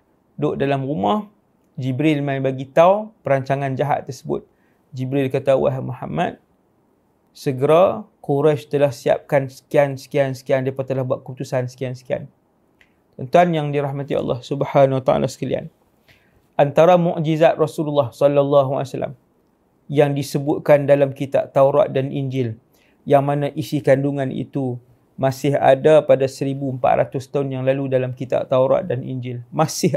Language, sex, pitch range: English, male, 130-145 Hz